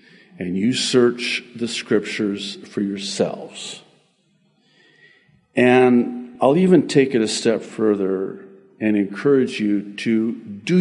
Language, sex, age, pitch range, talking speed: English, male, 50-69, 105-155 Hz, 110 wpm